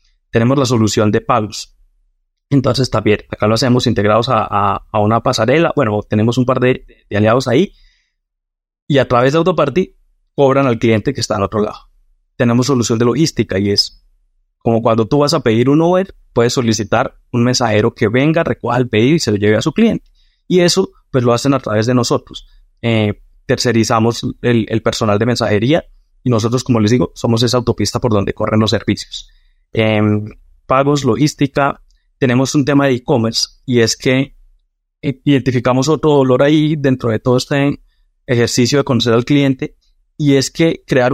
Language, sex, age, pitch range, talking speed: Spanish, male, 20-39, 110-140 Hz, 180 wpm